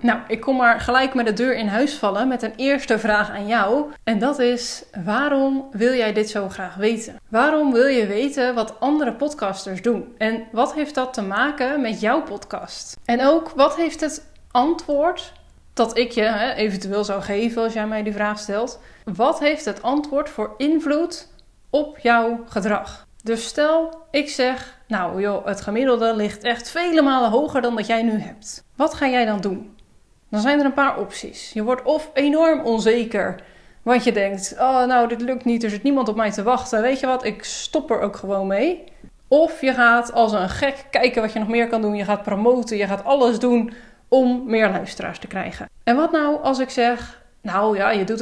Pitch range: 215-275 Hz